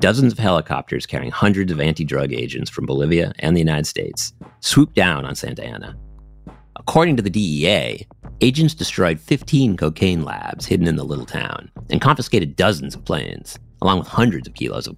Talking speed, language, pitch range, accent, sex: 175 wpm, English, 85-120 Hz, American, male